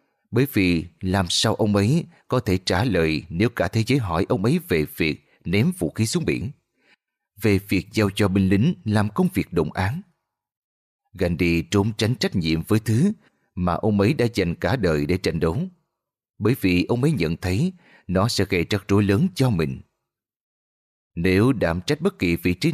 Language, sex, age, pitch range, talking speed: Vietnamese, male, 30-49, 90-125 Hz, 195 wpm